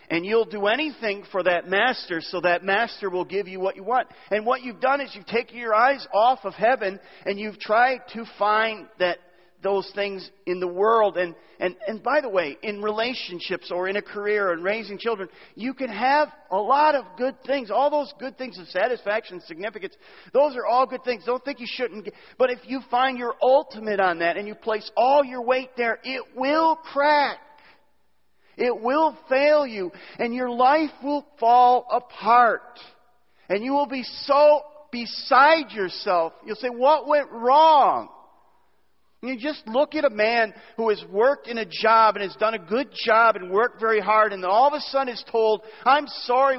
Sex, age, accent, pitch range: male, 40-59, American, 195-265 Hz